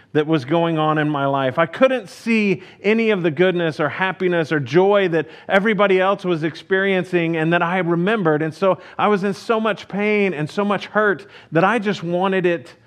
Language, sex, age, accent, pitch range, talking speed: English, male, 40-59, American, 160-200 Hz, 205 wpm